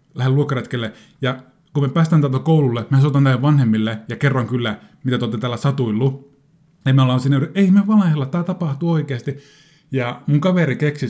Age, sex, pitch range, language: 30-49, male, 115-150 Hz, Finnish